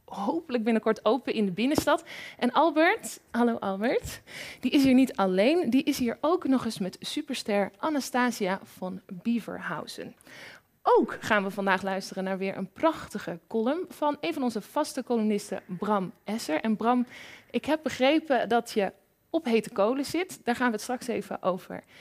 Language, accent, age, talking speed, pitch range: Dutch, Dutch, 20-39, 170 wpm, 200-285 Hz